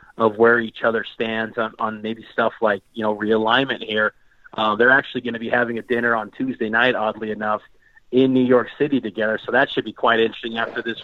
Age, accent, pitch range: 30-49, American, 110-125 Hz